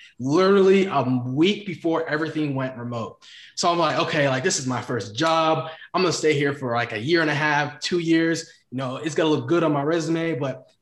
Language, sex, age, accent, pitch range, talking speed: English, male, 20-39, American, 140-170 Hz, 220 wpm